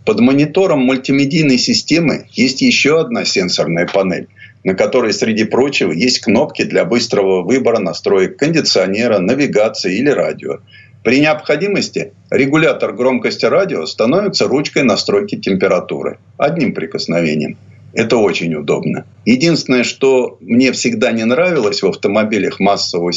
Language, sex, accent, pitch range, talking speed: Russian, male, native, 115-165 Hz, 120 wpm